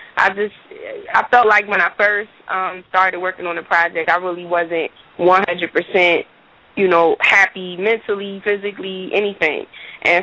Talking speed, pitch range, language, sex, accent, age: 145 wpm, 165-185 Hz, English, female, American, 20-39